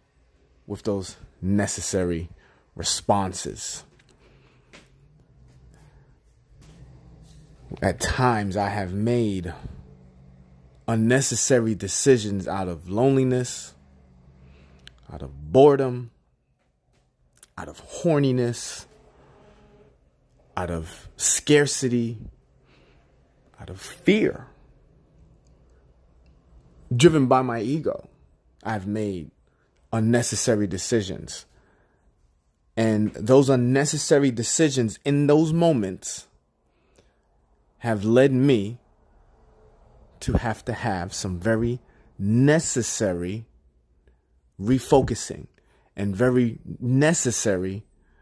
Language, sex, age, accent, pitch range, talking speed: English, male, 30-49, American, 75-125 Hz, 70 wpm